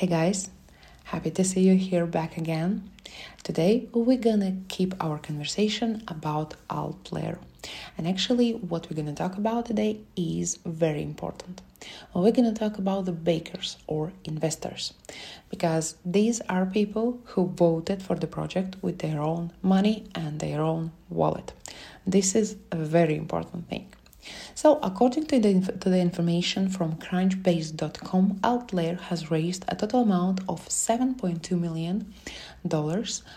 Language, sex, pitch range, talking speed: English, female, 160-200 Hz, 150 wpm